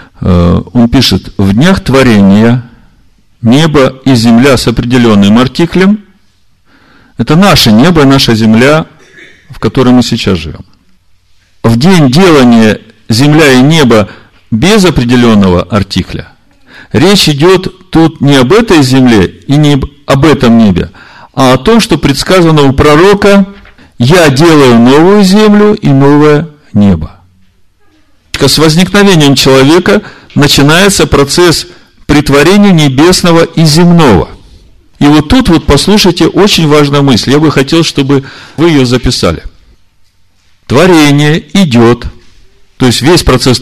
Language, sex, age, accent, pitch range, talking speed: Russian, male, 50-69, native, 100-155 Hz, 120 wpm